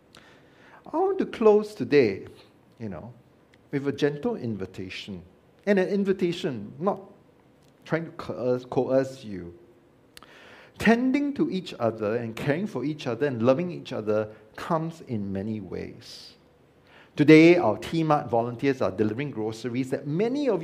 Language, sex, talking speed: English, male, 140 wpm